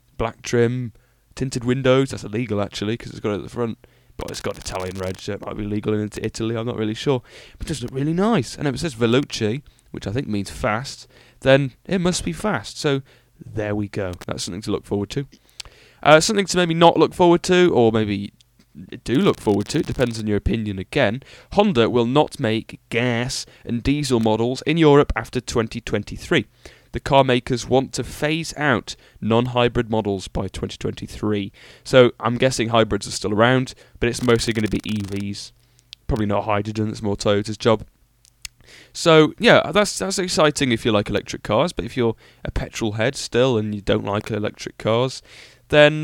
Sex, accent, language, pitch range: male, British, English, 105-140 Hz